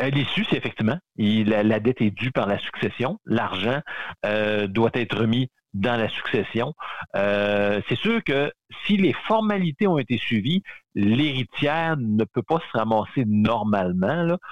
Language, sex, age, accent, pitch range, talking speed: French, male, 50-69, French, 100-150 Hz, 155 wpm